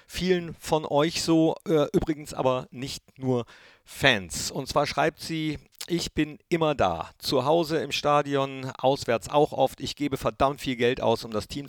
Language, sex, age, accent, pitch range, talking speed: German, male, 50-69, German, 115-140 Hz, 170 wpm